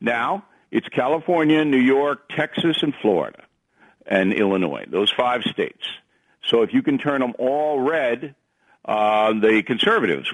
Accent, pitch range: American, 110-145 Hz